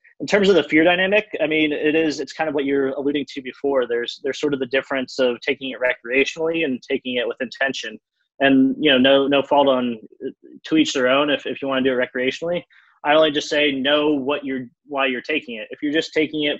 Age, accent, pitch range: 20-39, American, 130-150 Hz